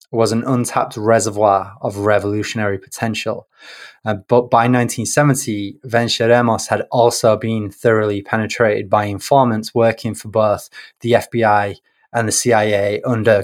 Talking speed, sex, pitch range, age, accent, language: 125 wpm, male, 105-120 Hz, 20-39, British, English